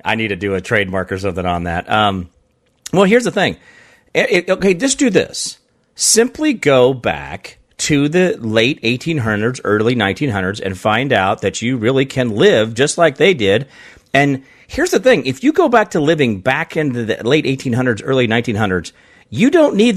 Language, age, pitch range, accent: English, 40-59, 115-165 Hz, American